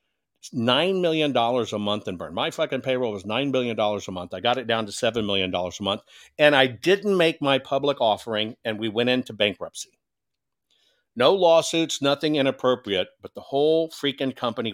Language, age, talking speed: English, 50-69, 180 wpm